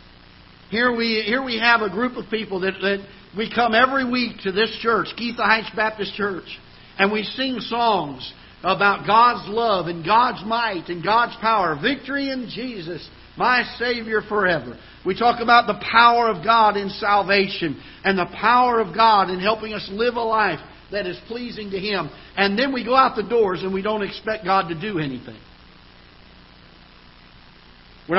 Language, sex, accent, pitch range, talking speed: English, male, American, 165-225 Hz, 175 wpm